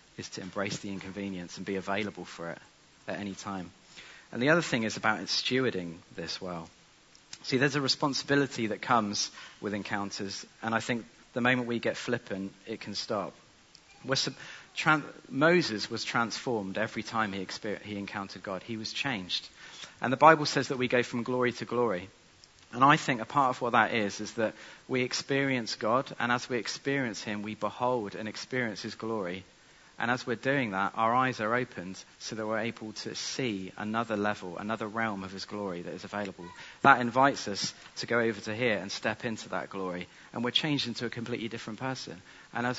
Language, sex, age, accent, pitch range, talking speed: English, male, 40-59, British, 100-125 Hz, 195 wpm